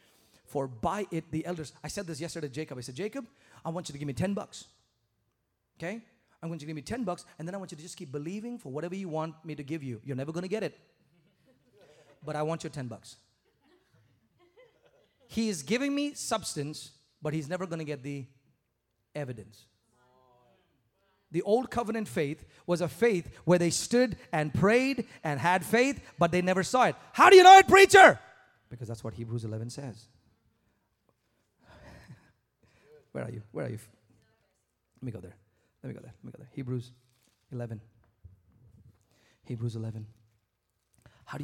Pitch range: 120-190 Hz